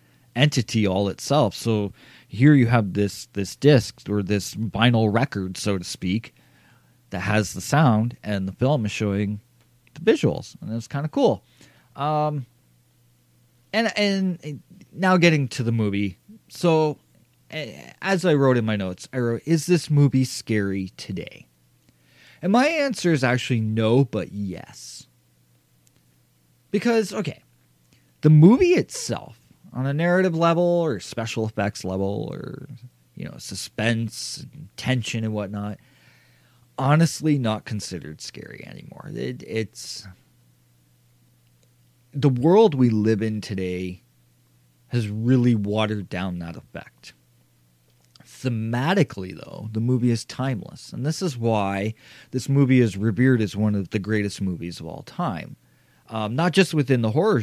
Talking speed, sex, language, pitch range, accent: 135 wpm, male, English, 95-135 Hz, American